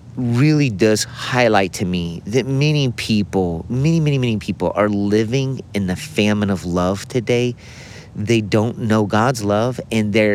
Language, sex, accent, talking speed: English, male, American, 150 wpm